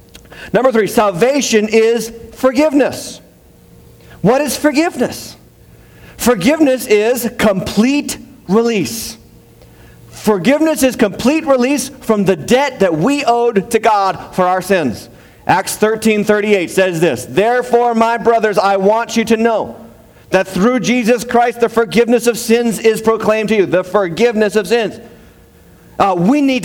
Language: English